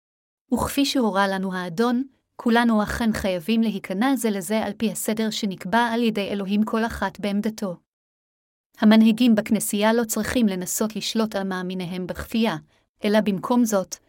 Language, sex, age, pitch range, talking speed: Hebrew, female, 30-49, 195-230 Hz, 135 wpm